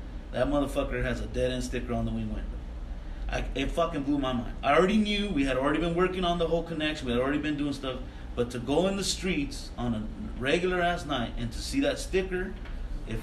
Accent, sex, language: American, male, English